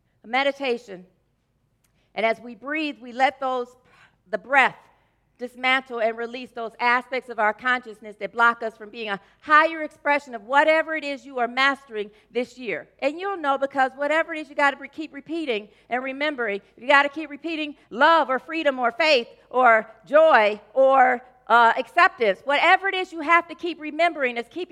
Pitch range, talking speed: 220-290 Hz, 180 wpm